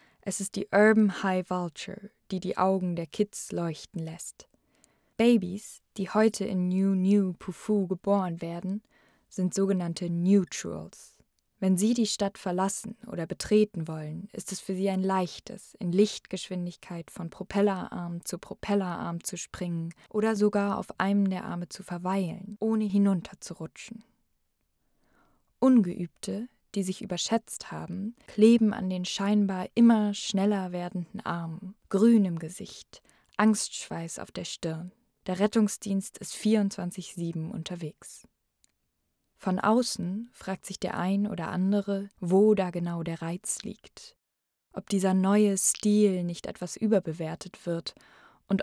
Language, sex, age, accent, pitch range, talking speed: German, female, 20-39, German, 175-210 Hz, 130 wpm